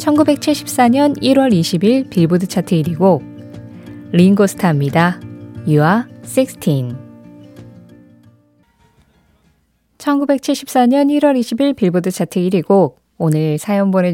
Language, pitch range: Korean, 165-230 Hz